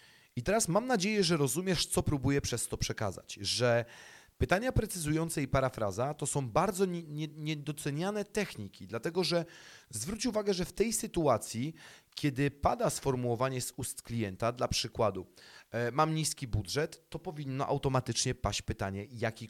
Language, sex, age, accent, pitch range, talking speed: Polish, male, 30-49, native, 115-150 Hz, 140 wpm